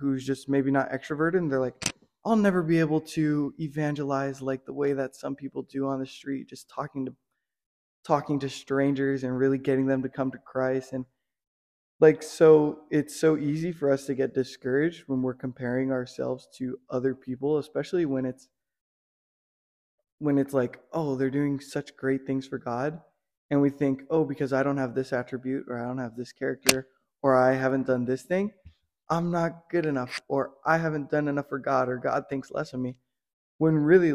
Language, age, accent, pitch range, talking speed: English, 20-39, American, 130-150 Hz, 195 wpm